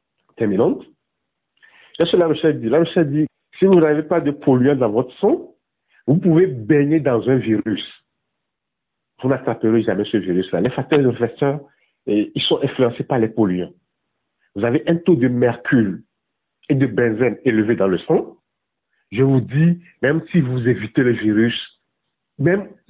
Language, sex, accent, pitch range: French, male, French, 110-155 Hz